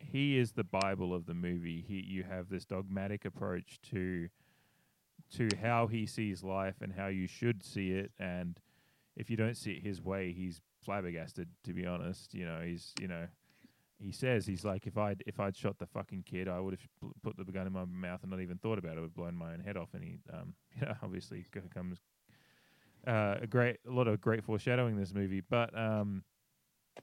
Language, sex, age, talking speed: English, male, 20-39, 210 wpm